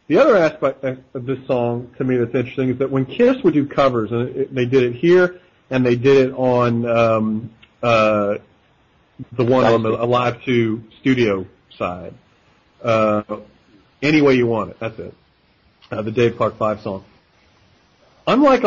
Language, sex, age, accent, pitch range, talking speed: English, male, 40-59, American, 115-145 Hz, 165 wpm